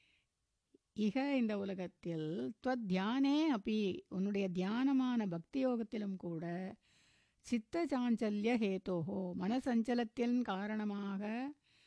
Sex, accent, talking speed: female, native, 65 wpm